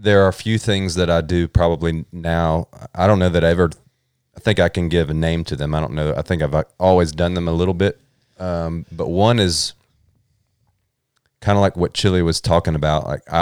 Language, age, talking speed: English, 30-49, 225 wpm